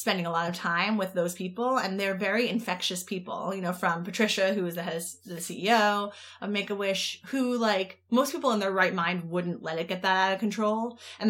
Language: English